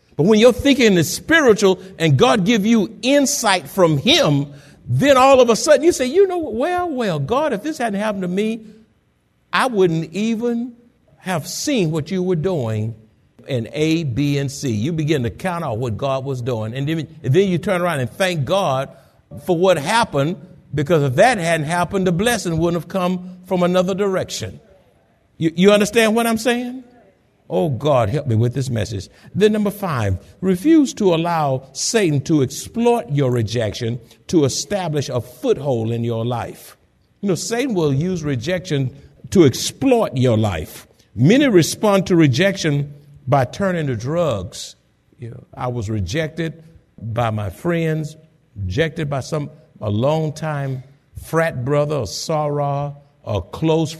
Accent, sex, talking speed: American, male, 160 wpm